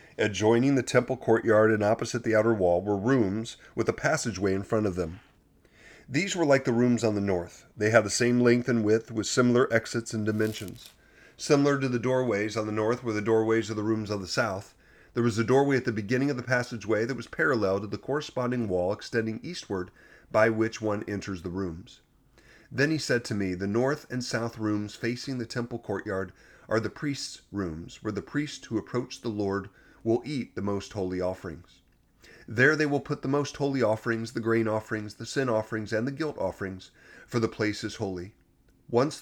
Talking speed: 205 wpm